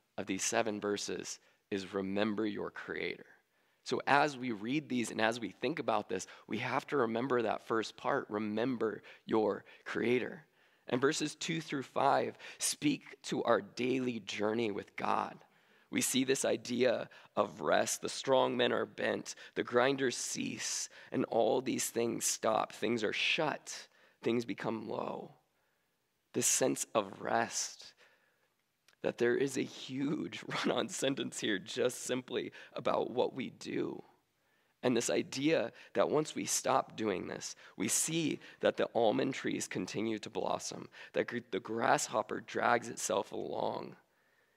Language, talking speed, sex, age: English, 145 wpm, male, 20-39